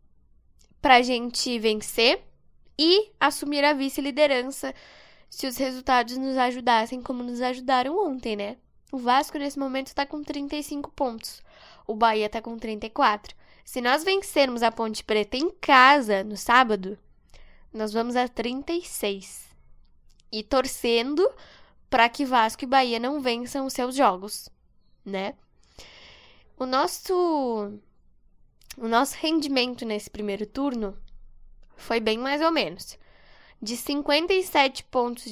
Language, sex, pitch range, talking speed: Portuguese, female, 220-280 Hz, 125 wpm